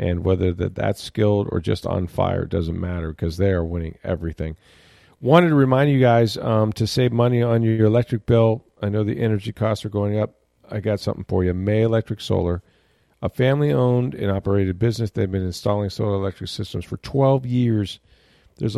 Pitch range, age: 95-115 Hz, 40-59